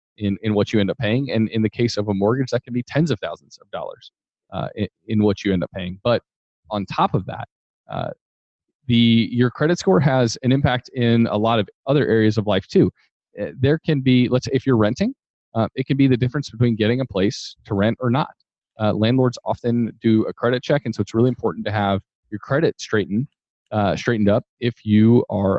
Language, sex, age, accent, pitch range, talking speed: English, male, 30-49, American, 105-135 Hz, 225 wpm